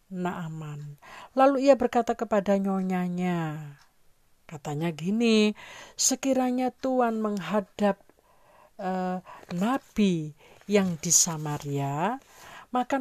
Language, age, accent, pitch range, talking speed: Indonesian, 50-69, native, 160-220 Hz, 80 wpm